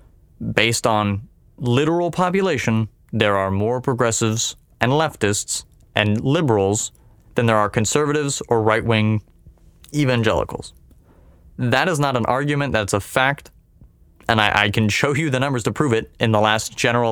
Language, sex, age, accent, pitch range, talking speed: English, male, 20-39, American, 110-140 Hz, 145 wpm